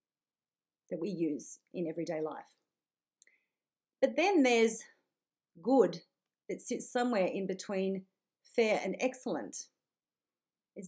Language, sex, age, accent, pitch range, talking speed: English, female, 40-59, Australian, 185-265 Hz, 105 wpm